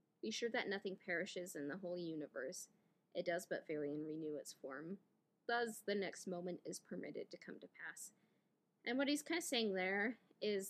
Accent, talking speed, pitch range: American, 195 wpm, 180-220 Hz